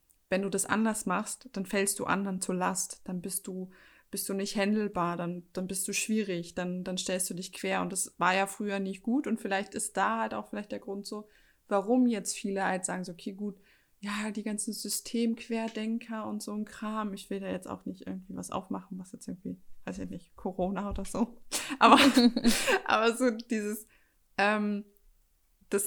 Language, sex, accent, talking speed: German, female, German, 200 wpm